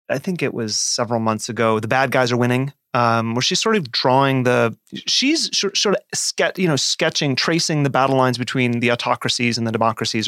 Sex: male